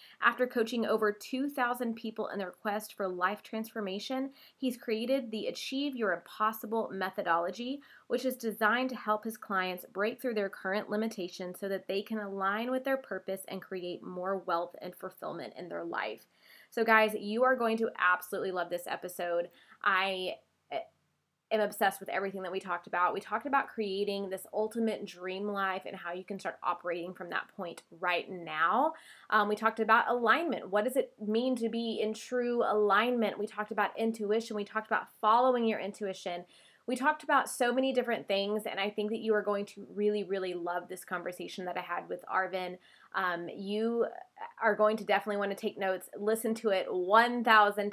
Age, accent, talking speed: 20-39, American, 185 wpm